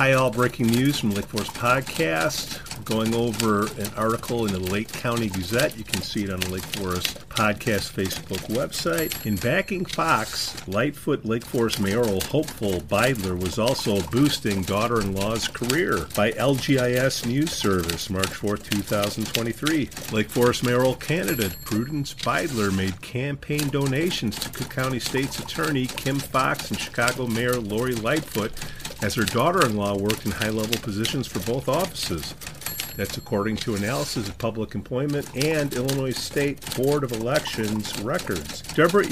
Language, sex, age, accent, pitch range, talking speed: English, male, 50-69, American, 105-135 Hz, 145 wpm